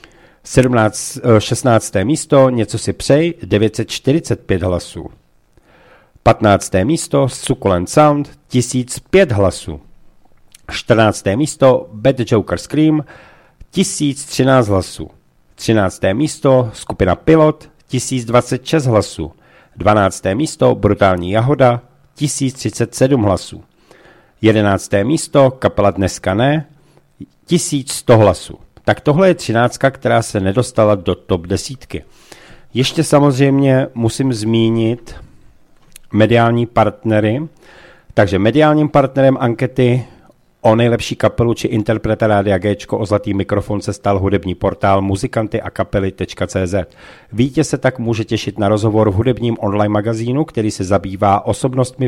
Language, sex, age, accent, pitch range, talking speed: Czech, male, 50-69, native, 105-130 Hz, 105 wpm